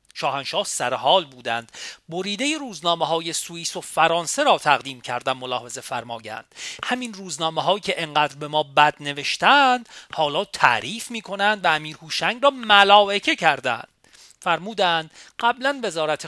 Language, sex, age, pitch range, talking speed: Persian, male, 40-59, 150-215 Hz, 125 wpm